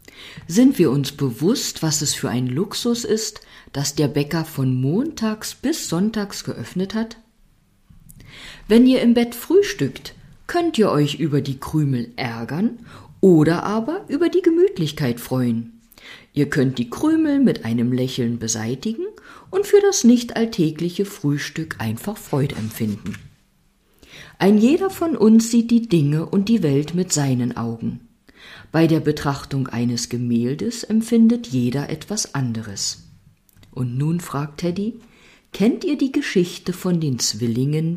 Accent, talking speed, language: German, 135 wpm, German